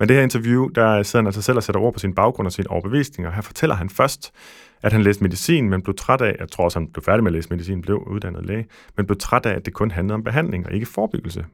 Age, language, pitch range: 30-49, Danish, 90-115 Hz